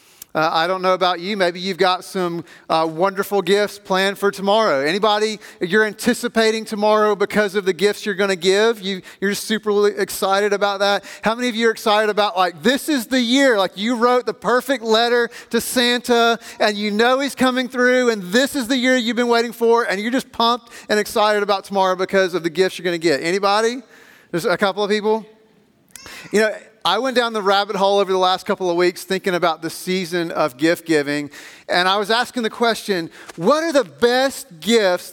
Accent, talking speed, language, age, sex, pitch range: American, 210 wpm, English, 40-59, male, 185-230 Hz